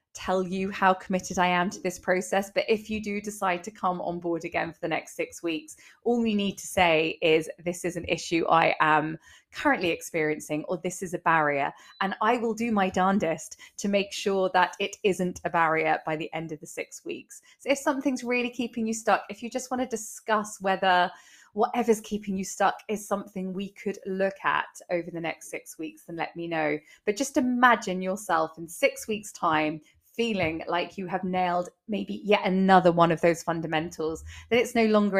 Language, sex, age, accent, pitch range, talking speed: English, female, 20-39, British, 170-215 Hz, 205 wpm